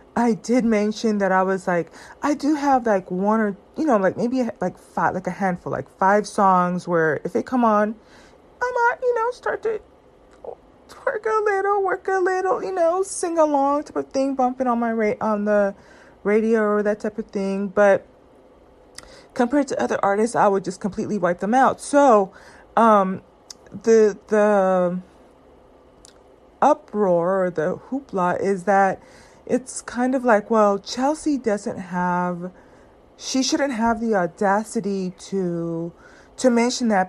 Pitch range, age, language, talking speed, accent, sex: 195-250 Hz, 30-49, English, 160 wpm, American, female